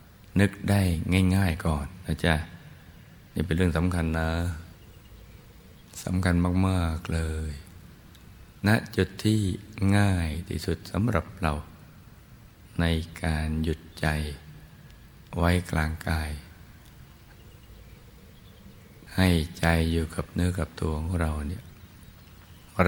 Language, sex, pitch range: Thai, male, 80-95 Hz